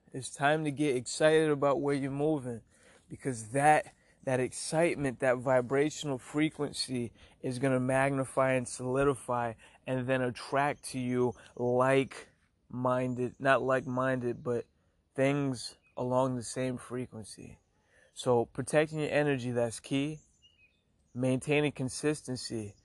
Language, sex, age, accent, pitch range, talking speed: English, male, 20-39, American, 115-135 Hz, 115 wpm